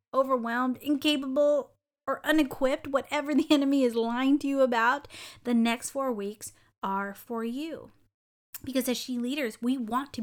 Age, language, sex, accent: 30-49, English, female, American